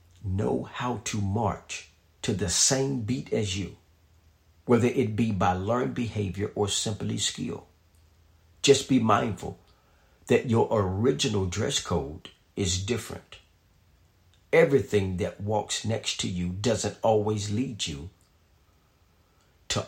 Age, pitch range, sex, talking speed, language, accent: 50-69, 90-120 Hz, male, 120 wpm, English, American